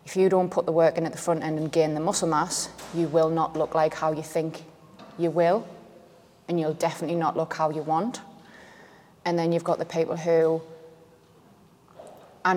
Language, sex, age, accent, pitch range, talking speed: English, female, 20-39, British, 160-175 Hz, 200 wpm